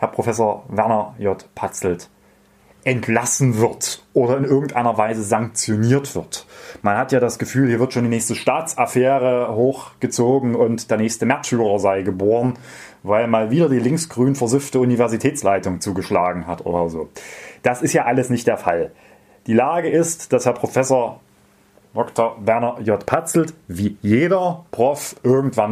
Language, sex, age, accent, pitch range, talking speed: German, male, 30-49, German, 105-135 Hz, 145 wpm